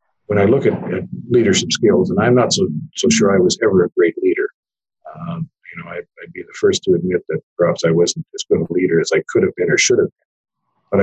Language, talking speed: English, 255 wpm